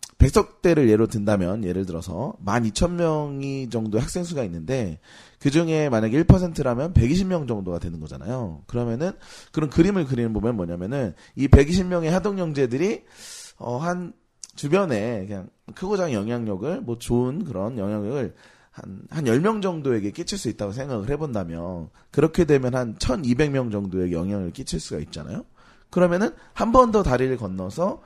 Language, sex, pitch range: Korean, male, 100-150 Hz